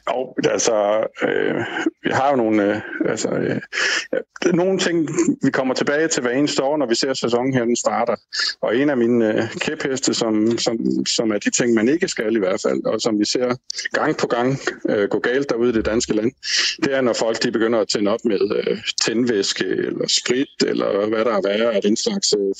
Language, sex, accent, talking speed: Danish, male, native, 220 wpm